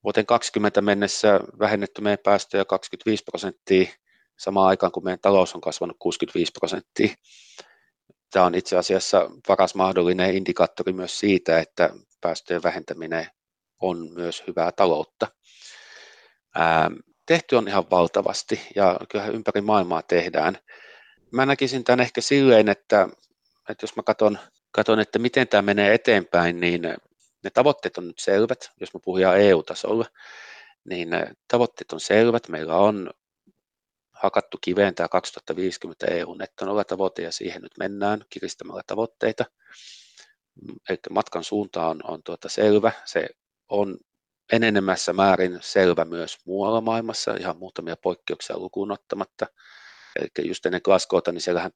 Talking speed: 130 wpm